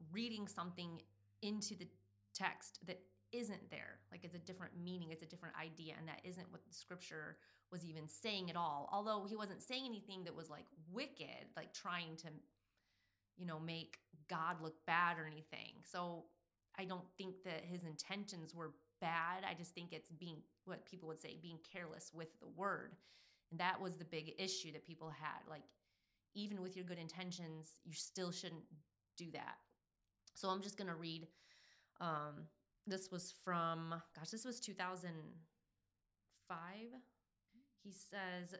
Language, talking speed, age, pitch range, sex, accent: English, 165 wpm, 30-49, 160-185 Hz, female, American